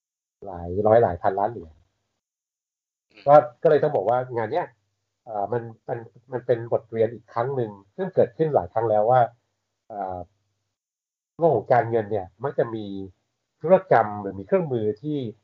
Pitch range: 100-135 Hz